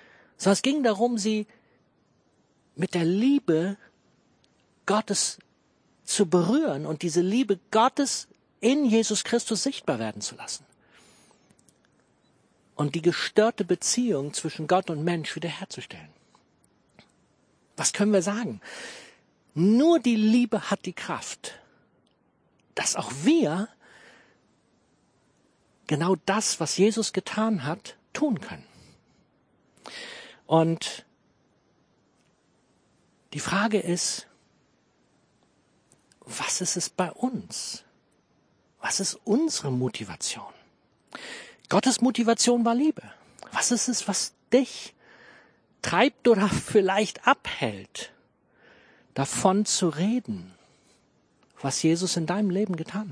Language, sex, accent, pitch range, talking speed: German, male, German, 180-235 Hz, 100 wpm